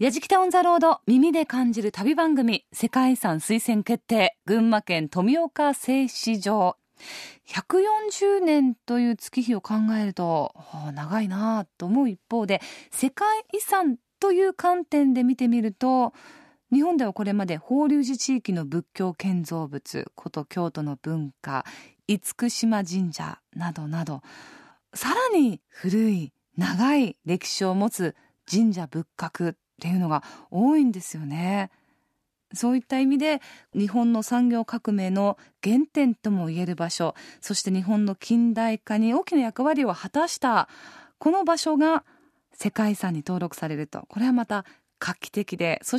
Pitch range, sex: 180-275 Hz, female